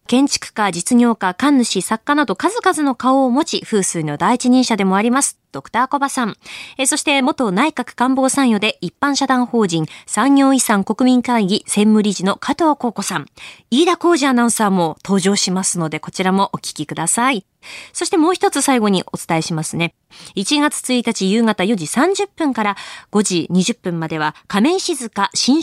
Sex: female